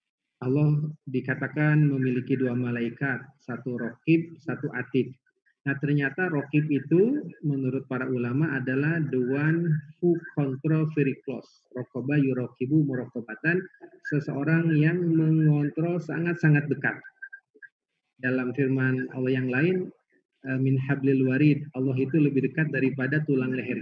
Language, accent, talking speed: Indonesian, native, 110 wpm